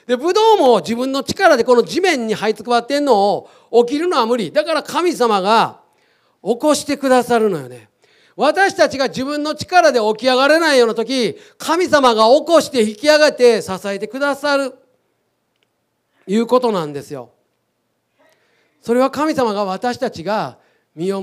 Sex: male